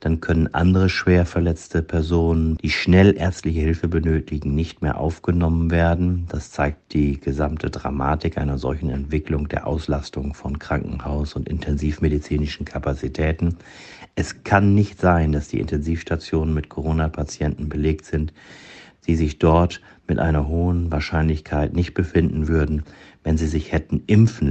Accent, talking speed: German, 135 wpm